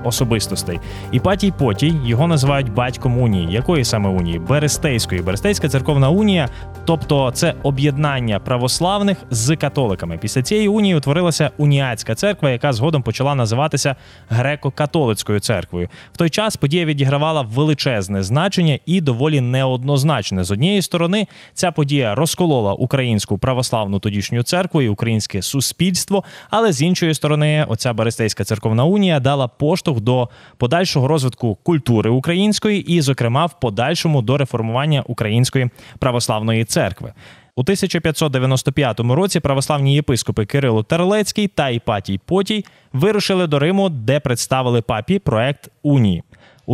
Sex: male